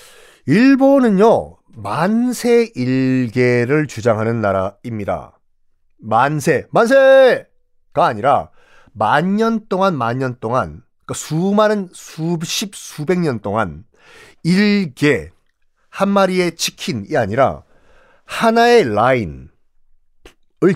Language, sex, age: Korean, male, 40-59